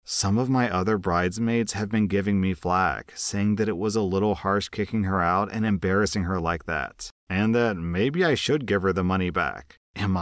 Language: English